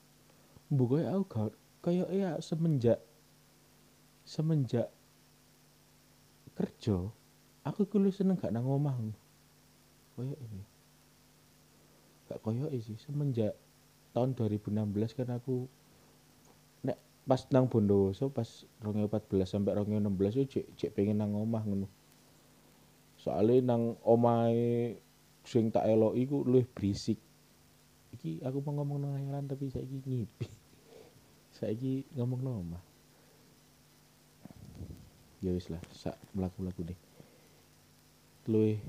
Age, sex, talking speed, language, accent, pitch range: 30-49, male, 110 wpm, Indonesian, native, 95-130 Hz